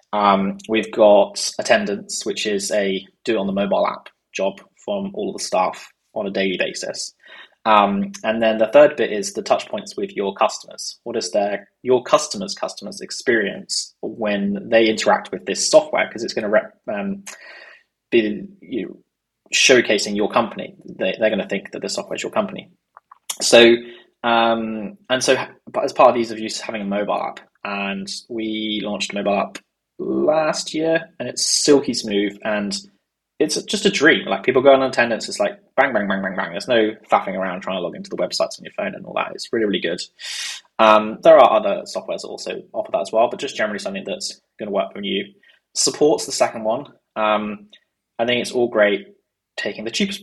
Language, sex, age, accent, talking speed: English, male, 20-39, British, 200 wpm